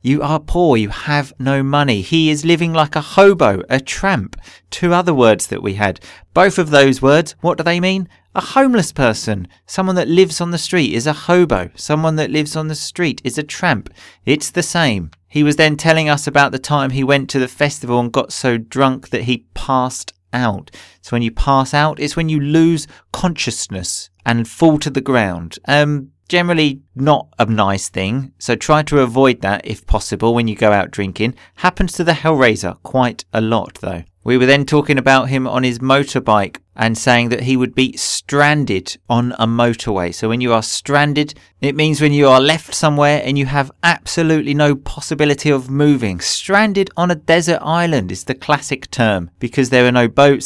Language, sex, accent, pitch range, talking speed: English, male, British, 120-155 Hz, 200 wpm